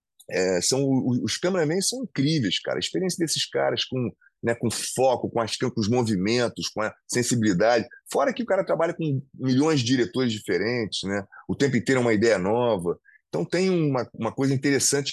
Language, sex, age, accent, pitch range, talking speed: Portuguese, male, 20-39, Brazilian, 125-170 Hz, 185 wpm